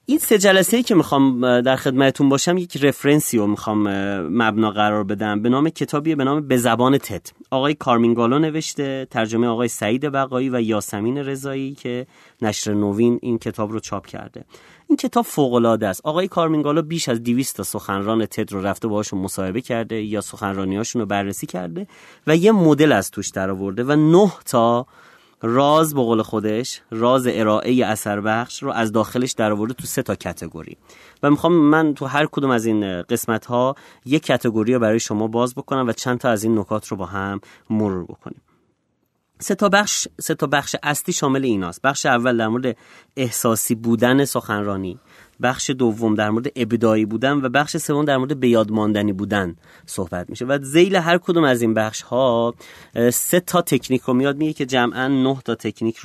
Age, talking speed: 30-49, 175 wpm